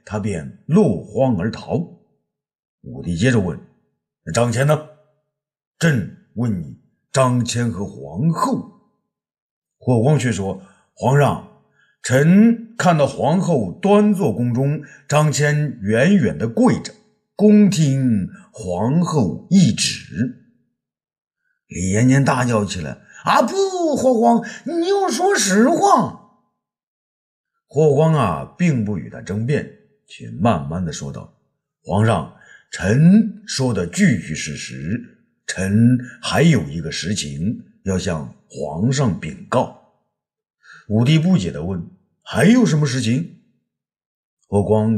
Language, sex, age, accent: Chinese, male, 50-69, native